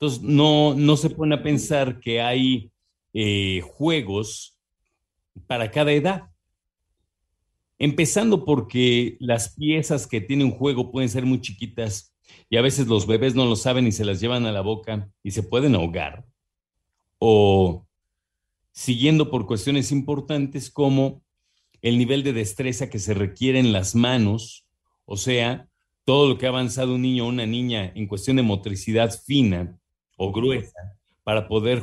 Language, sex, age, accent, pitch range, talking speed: Spanish, male, 40-59, Mexican, 100-130 Hz, 155 wpm